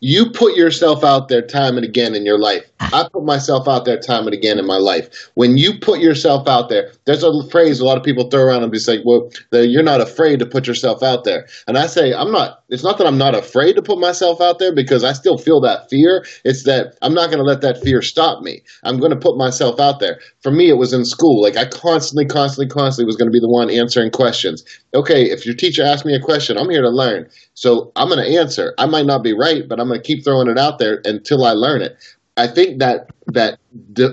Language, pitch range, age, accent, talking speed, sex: English, 120-165 Hz, 30-49, American, 260 wpm, male